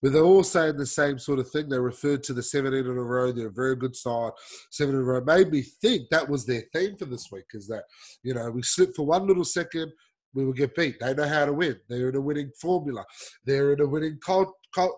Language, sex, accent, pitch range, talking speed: English, male, Australian, 125-180 Hz, 265 wpm